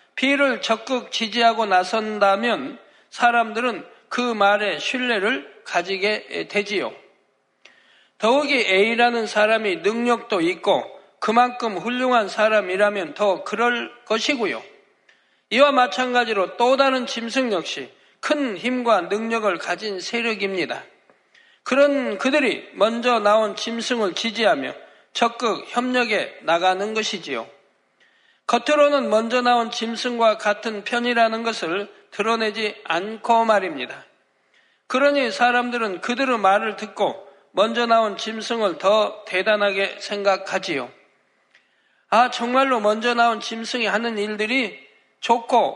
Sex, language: male, Korean